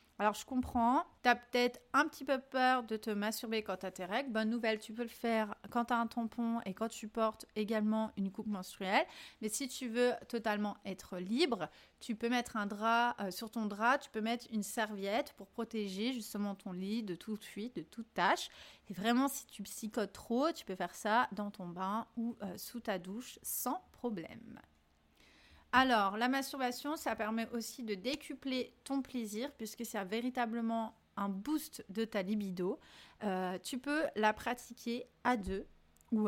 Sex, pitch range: female, 210-255 Hz